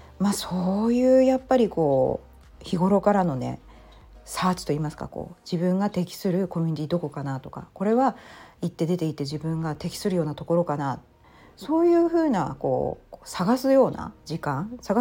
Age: 40-59